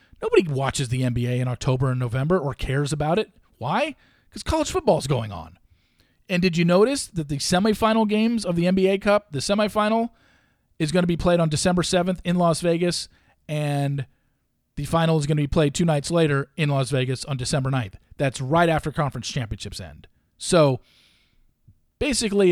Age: 40-59